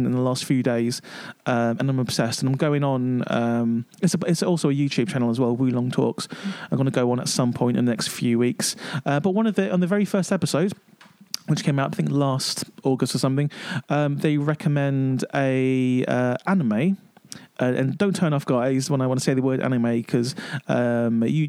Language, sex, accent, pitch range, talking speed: English, male, British, 130-170 Hz, 225 wpm